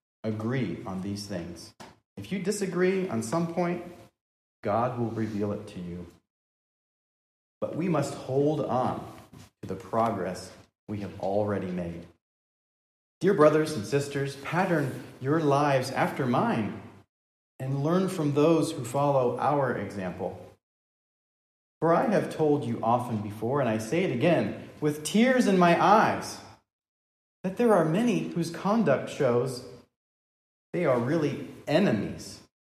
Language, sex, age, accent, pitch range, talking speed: English, male, 30-49, American, 100-155 Hz, 135 wpm